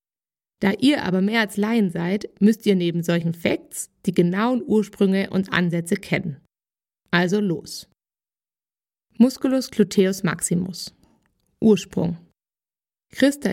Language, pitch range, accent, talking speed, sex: German, 180-235 Hz, German, 110 wpm, female